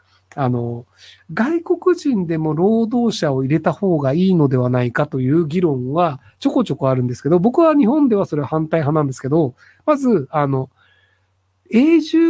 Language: Japanese